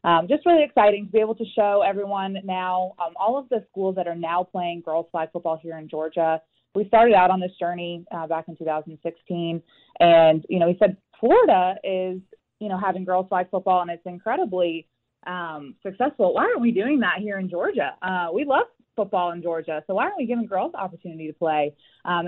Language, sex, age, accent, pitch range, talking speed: English, female, 20-39, American, 170-210 Hz, 215 wpm